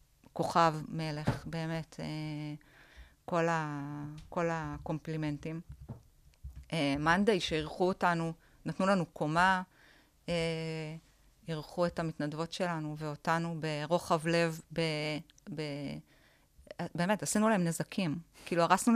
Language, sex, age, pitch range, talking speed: Hebrew, female, 30-49, 155-185 Hz, 100 wpm